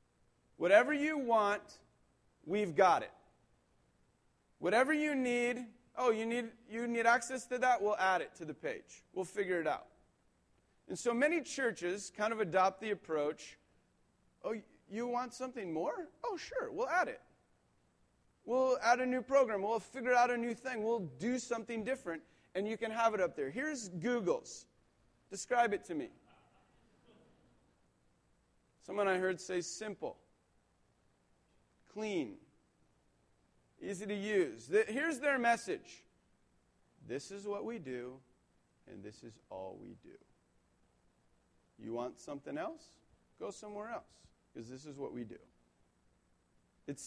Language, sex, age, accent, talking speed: English, male, 40-59, American, 145 wpm